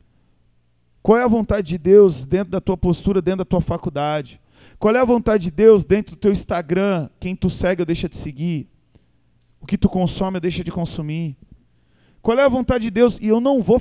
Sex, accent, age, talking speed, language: male, Brazilian, 40-59, 215 wpm, Portuguese